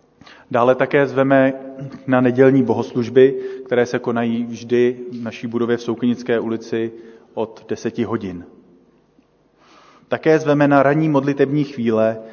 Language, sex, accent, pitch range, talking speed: Czech, male, native, 115-130 Hz, 120 wpm